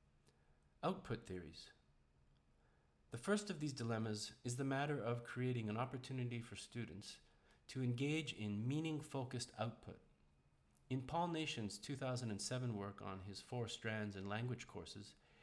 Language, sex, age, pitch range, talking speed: English, male, 40-59, 95-130 Hz, 130 wpm